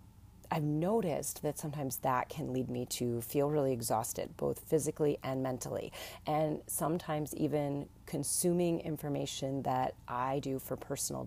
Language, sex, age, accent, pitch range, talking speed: English, female, 30-49, American, 120-150 Hz, 140 wpm